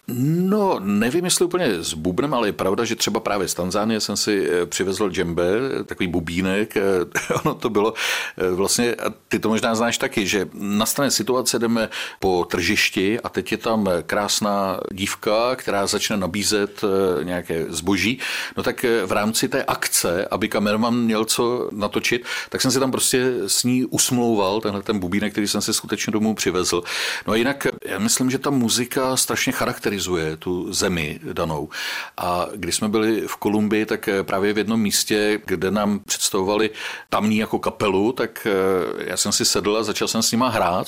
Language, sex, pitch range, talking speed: Czech, male, 100-125 Hz, 170 wpm